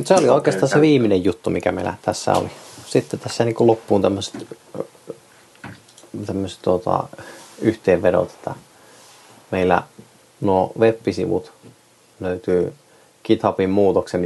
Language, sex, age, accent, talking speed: Finnish, male, 30-49, native, 95 wpm